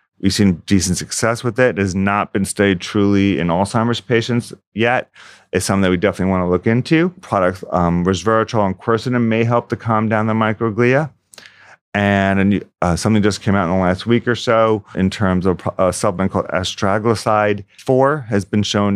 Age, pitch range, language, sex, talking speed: 40-59, 95-110 Hz, English, male, 190 wpm